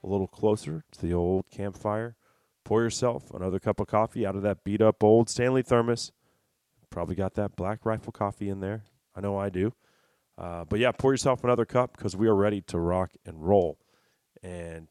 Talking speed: 195 wpm